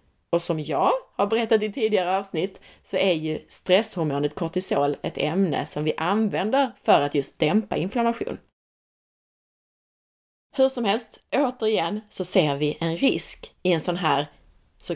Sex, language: female, Swedish